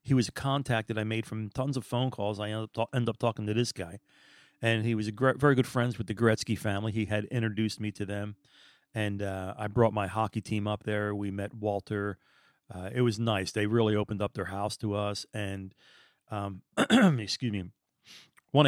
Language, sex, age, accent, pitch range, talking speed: English, male, 40-59, American, 105-145 Hz, 220 wpm